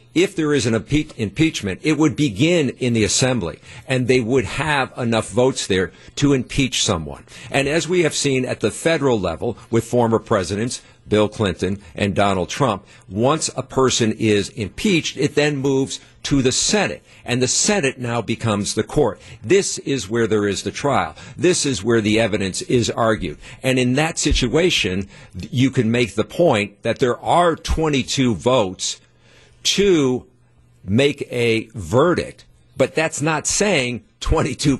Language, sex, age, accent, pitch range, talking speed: English, male, 50-69, American, 110-140 Hz, 160 wpm